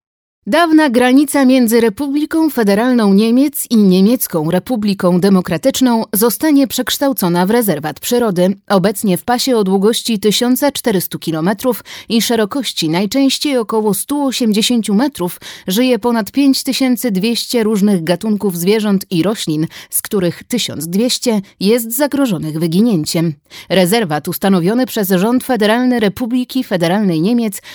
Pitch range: 190-255 Hz